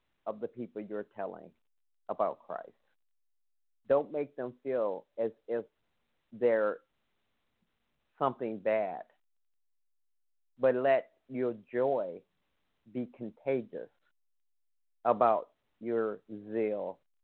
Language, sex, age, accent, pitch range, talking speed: English, male, 50-69, American, 105-125 Hz, 85 wpm